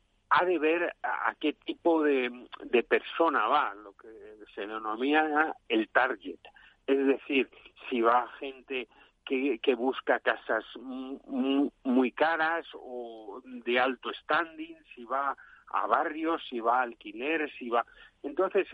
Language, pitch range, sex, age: Spanish, 130-205 Hz, male, 50-69